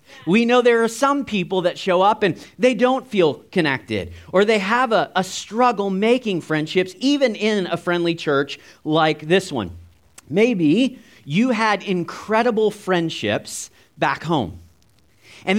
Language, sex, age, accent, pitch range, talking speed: English, male, 40-59, American, 175-225 Hz, 145 wpm